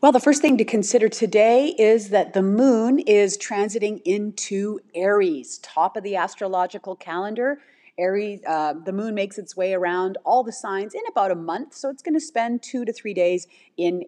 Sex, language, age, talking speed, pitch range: female, English, 40-59, 190 wpm, 180-230 Hz